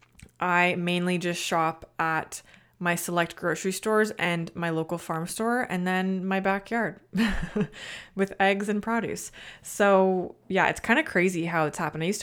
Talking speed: 160 wpm